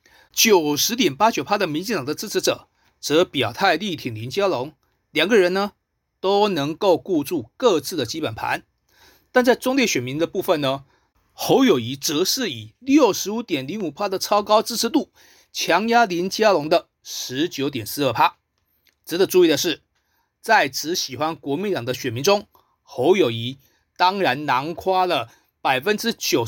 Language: Chinese